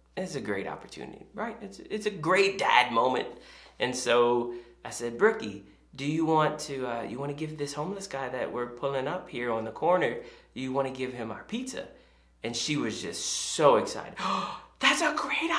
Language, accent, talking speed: English, American, 205 wpm